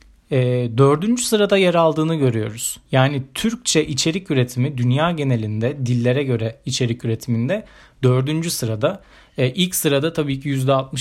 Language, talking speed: Turkish, 115 wpm